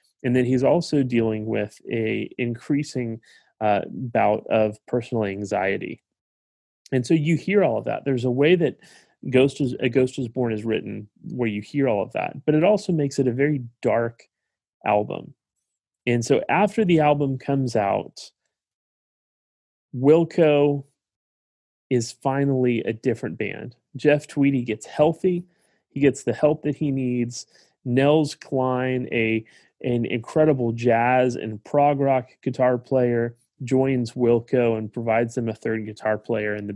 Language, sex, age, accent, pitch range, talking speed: English, male, 30-49, American, 115-140 Hz, 150 wpm